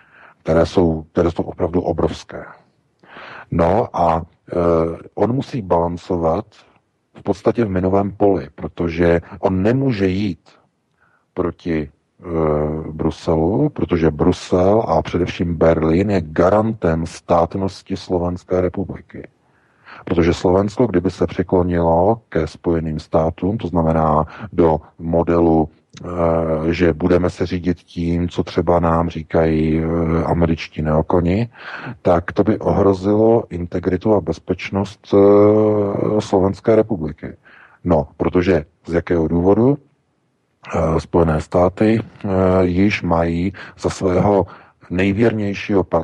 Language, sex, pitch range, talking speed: Czech, male, 85-100 Hz, 100 wpm